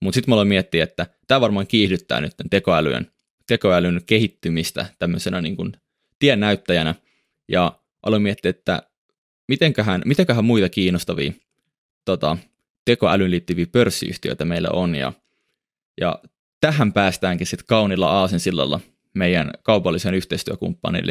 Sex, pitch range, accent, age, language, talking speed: male, 90-105 Hz, native, 20-39, Finnish, 120 wpm